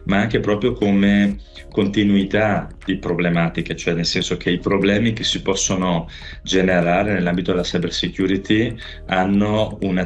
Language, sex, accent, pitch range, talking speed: Italian, male, native, 90-105 Hz, 130 wpm